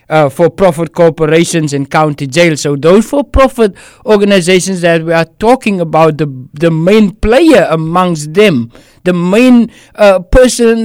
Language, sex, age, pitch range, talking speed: English, male, 60-79, 165-220 Hz, 140 wpm